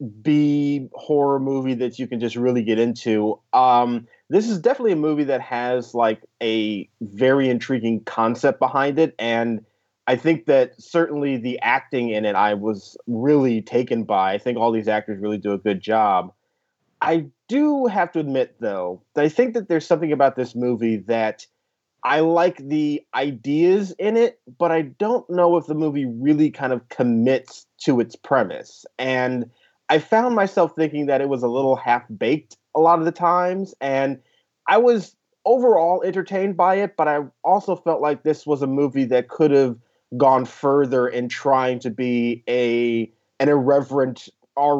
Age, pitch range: 30-49, 120-160 Hz